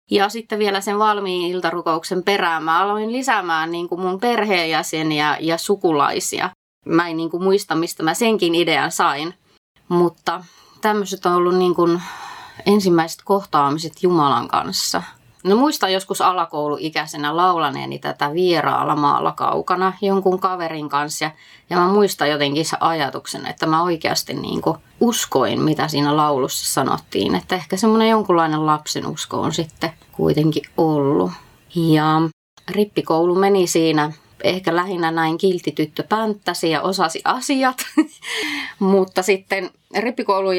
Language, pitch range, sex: Finnish, 155-190 Hz, female